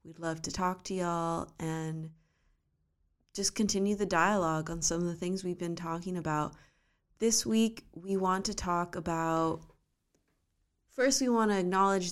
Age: 20-39